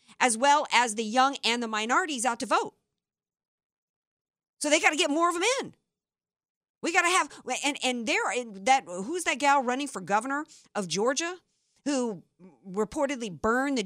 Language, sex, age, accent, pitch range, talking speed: English, female, 50-69, American, 215-320 Hz, 170 wpm